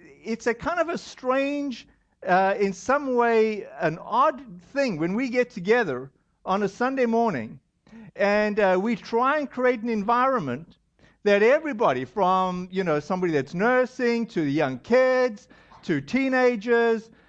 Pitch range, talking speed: 195-255 Hz, 150 wpm